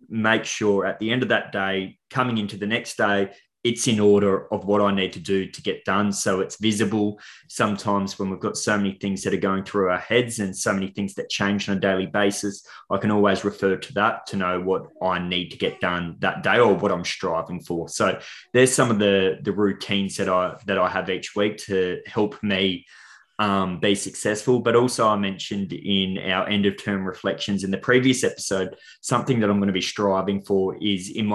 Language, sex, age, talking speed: English, male, 20-39, 220 wpm